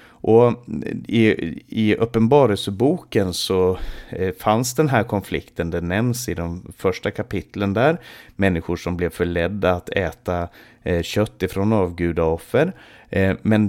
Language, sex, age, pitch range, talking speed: Swedish, male, 30-49, 90-120 Hz, 120 wpm